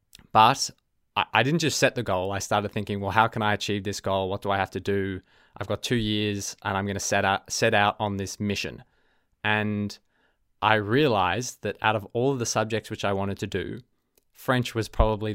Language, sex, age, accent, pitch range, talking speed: English, male, 20-39, Australian, 100-115 Hz, 220 wpm